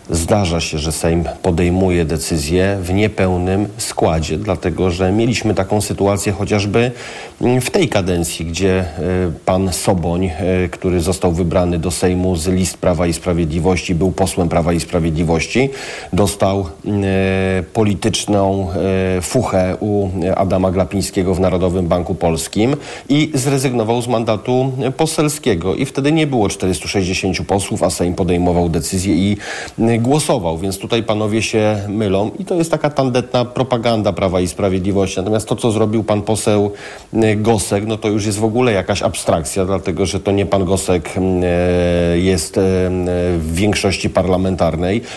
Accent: native